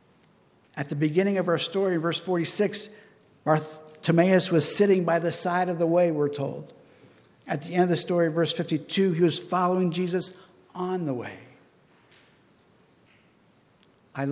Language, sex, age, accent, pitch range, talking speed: English, male, 60-79, American, 155-185 Hz, 150 wpm